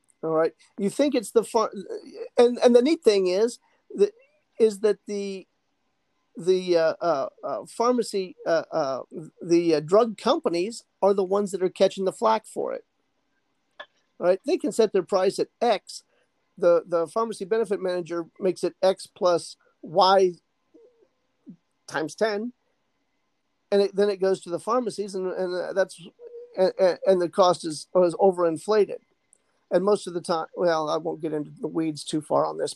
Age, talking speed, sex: 50-69, 170 wpm, male